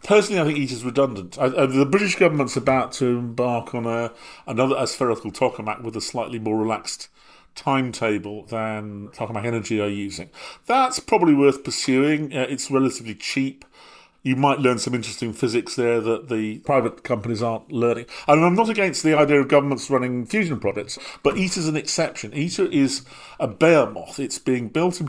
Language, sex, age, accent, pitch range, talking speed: English, male, 40-59, British, 115-140 Hz, 180 wpm